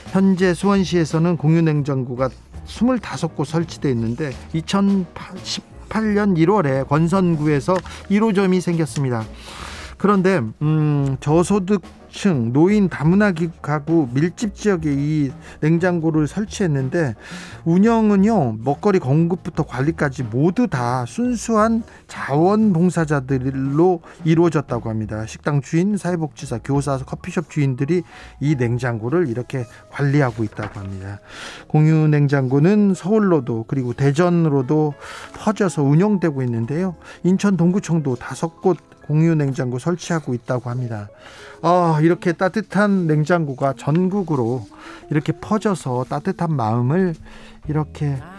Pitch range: 135-185 Hz